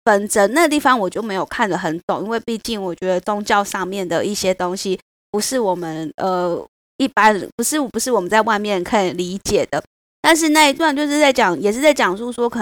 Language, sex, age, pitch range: Chinese, female, 20-39, 195-235 Hz